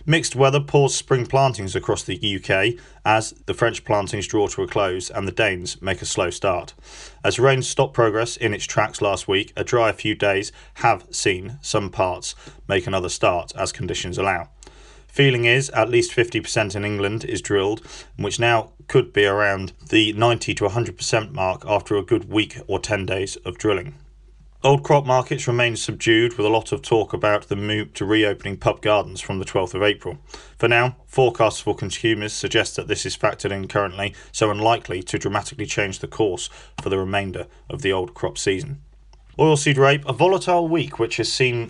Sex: male